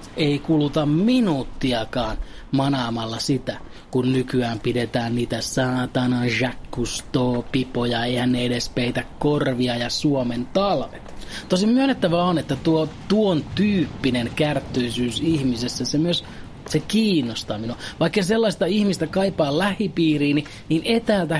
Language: Finnish